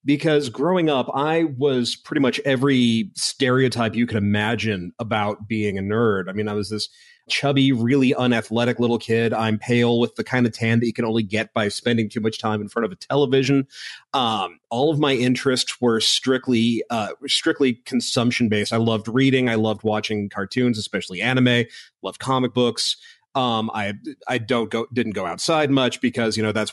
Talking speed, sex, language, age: 190 wpm, male, English, 30-49